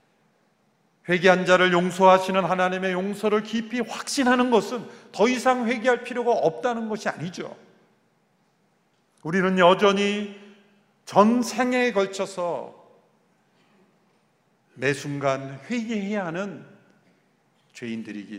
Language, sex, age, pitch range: Korean, male, 40-59, 135-215 Hz